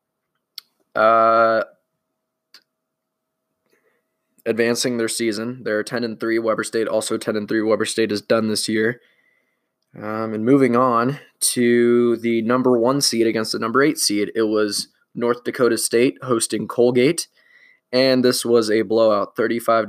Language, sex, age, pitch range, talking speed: English, male, 20-39, 110-125 Hz, 140 wpm